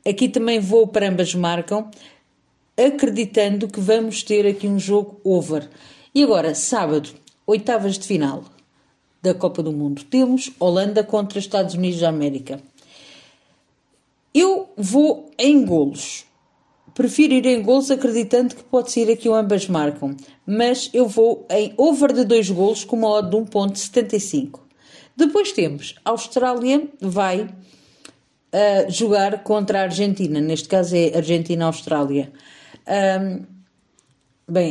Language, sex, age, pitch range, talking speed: Portuguese, female, 50-69, 175-225 Hz, 130 wpm